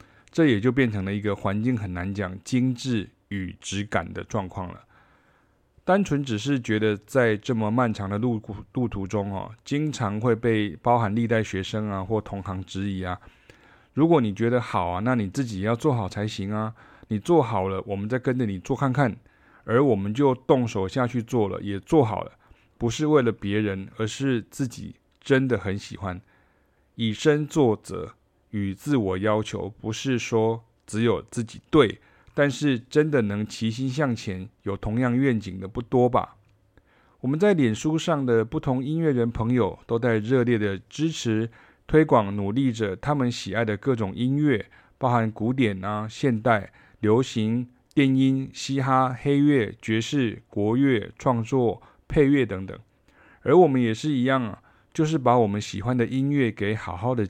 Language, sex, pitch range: Chinese, male, 105-130 Hz